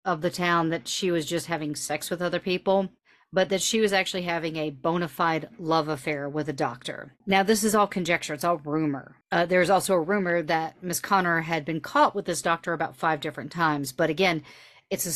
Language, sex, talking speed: English, female, 220 wpm